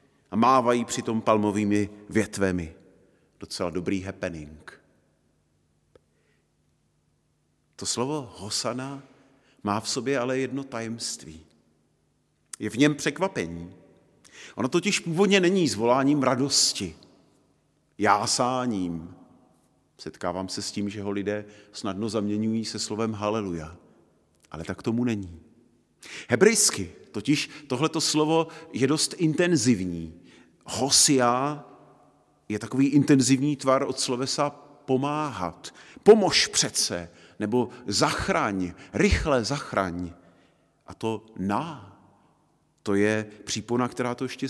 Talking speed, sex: 100 wpm, male